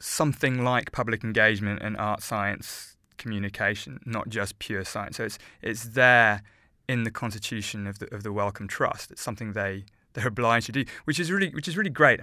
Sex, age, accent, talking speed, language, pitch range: male, 20-39, British, 190 wpm, English, 105-125 Hz